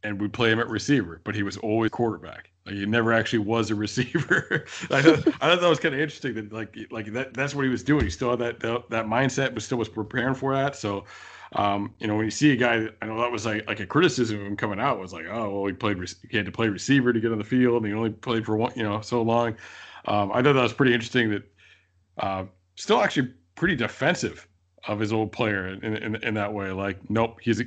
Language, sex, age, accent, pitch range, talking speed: English, male, 40-59, American, 100-125 Hz, 260 wpm